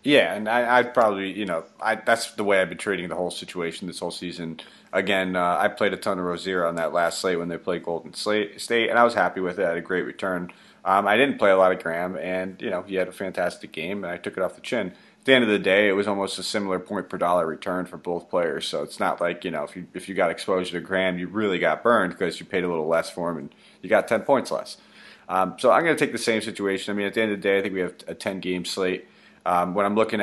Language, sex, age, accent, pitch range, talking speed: English, male, 30-49, American, 90-105 Hz, 285 wpm